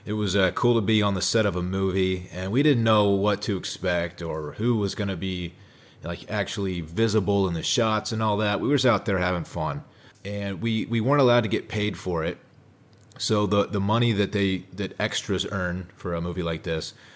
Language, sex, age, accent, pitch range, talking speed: English, male, 30-49, American, 90-115 Hz, 225 wpm